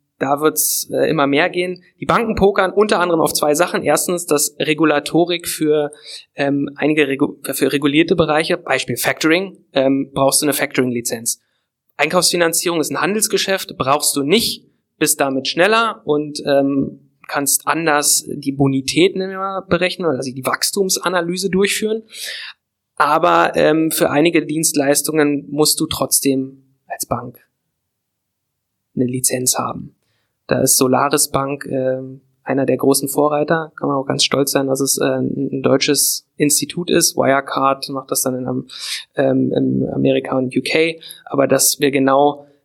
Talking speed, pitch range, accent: 145 wpm, 135-160 Hz, German